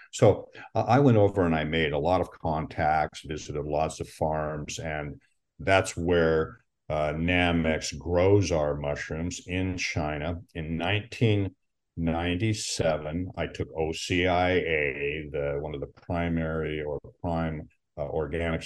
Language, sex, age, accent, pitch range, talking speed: English, male, 50-69, American, 75-90 Hz, 130 wpm